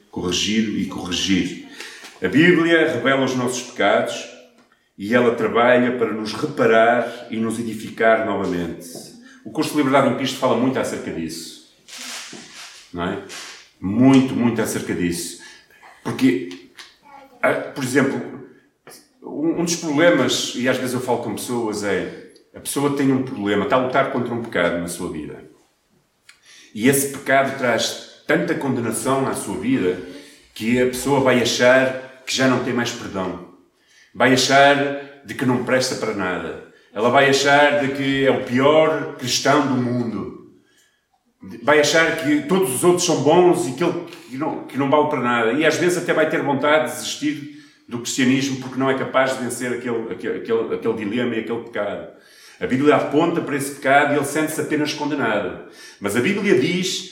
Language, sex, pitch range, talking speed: Portuguese, male, 115-150 Hz, 165 wpm